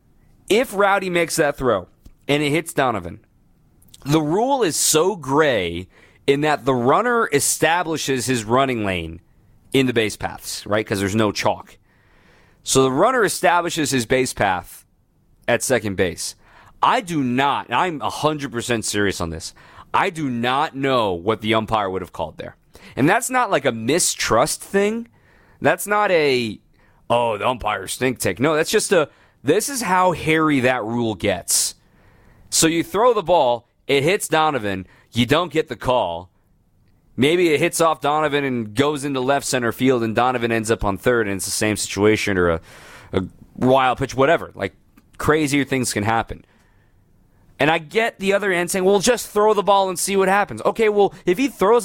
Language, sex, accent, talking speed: English, male, American, 180 wpm